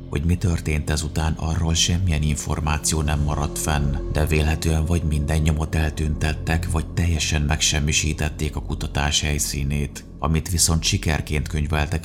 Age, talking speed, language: 30-49, 130 wpm, Hungarian